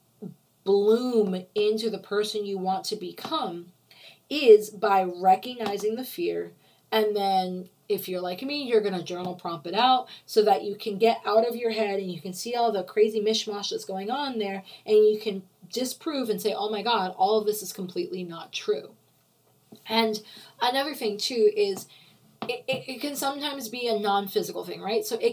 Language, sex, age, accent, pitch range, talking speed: English, female, 20-39, American, 190-230 Hz, 190 wpm